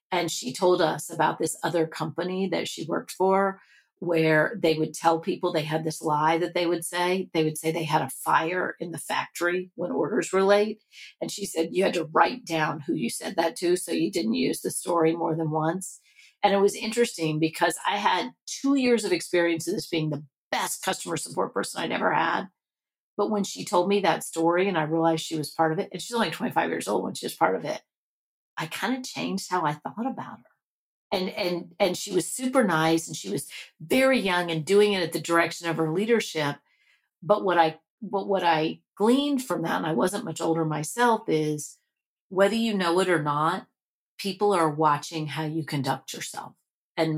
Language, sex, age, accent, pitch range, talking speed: English, female, 40-59, American, 160-195 Hz, 215 wpm